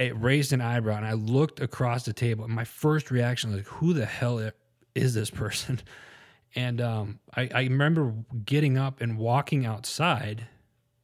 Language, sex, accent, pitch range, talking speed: English, male, American, 110-125 Hz, 175 wpm